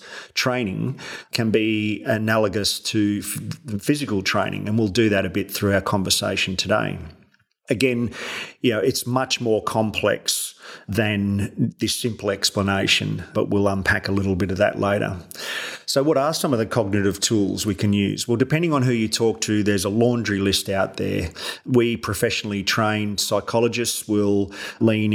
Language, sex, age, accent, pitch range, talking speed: English, male, 30-49, Australian, 100-115 Hz, 160 wpm